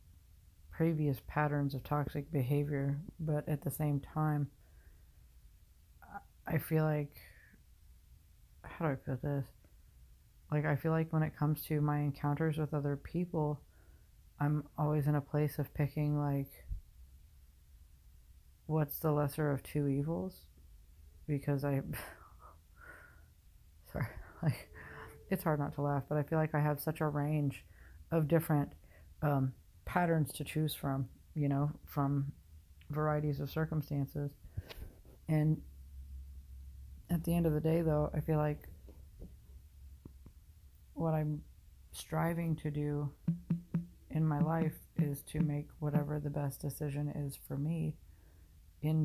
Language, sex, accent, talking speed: English, female, American, 130 wpm